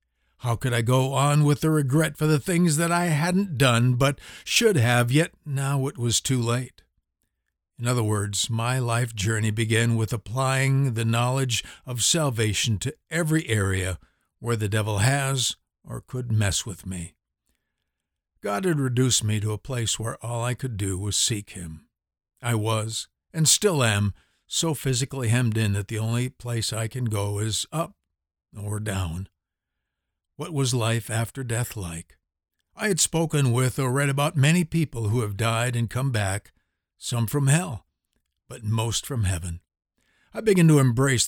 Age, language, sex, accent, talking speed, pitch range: 60-79, English, male, American, 170 wpm, 105-135 Hz